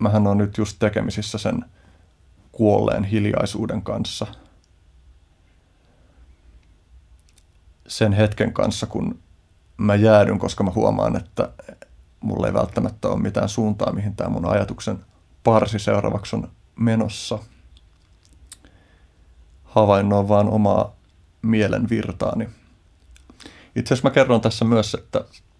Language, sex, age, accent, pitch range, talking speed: Finnish, male, 30-49, native, 85-110 Hz, 105 wpm